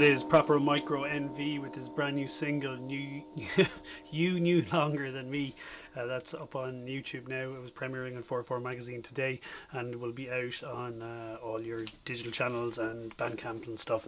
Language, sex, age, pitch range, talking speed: English, male, 30-49, 120-150 Hz, 185 wpm